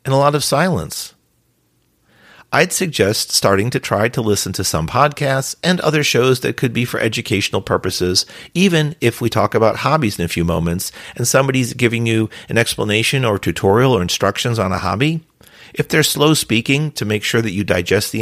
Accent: American